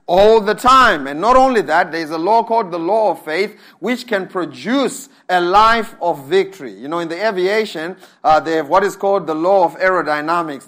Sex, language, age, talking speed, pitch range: male, English, 30-49, 215 wpm, 180-235 Hz